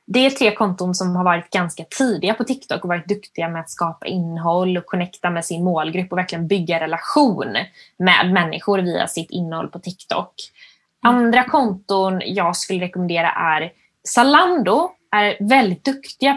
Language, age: Swedish, 20-39